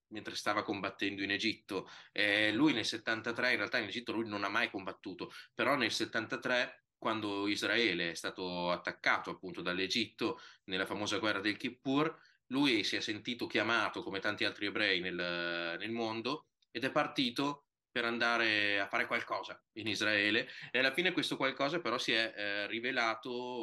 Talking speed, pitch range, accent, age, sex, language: 160 wpm, 95-120 Hz, native, 20-39, male, Italian